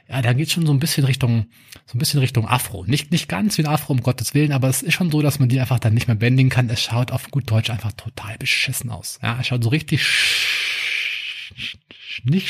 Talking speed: 245 wpm